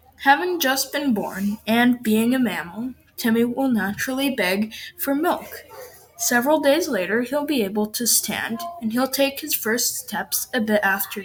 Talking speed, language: 165 wpm, English